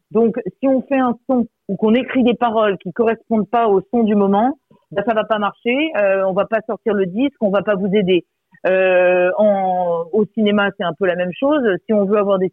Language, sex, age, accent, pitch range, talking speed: French, female, 40-59, French, 180-225 Hz, 260 wpm